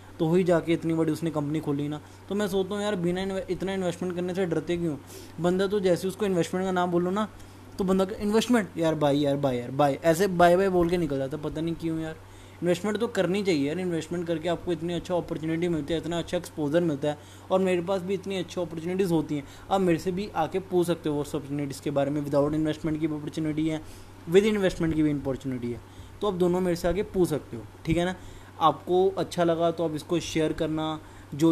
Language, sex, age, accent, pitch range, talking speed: Hindi, male, 20-39, native, 145-175 Hz, 240 wpm